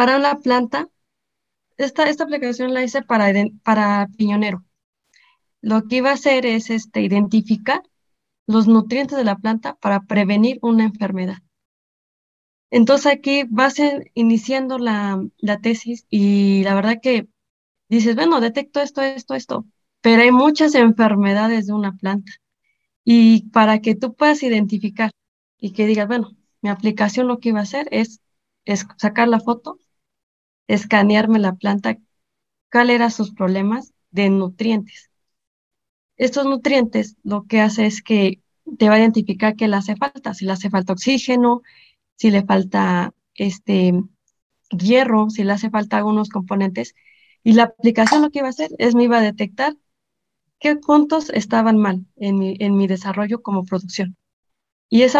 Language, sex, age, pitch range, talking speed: Spanish, female, 20-39, 205-255 Hz, 150 wpm